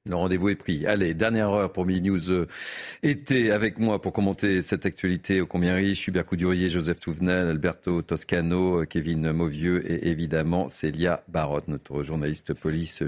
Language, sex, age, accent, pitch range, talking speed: French, male, 40-59, French, 90-105 Hz, 160 wpm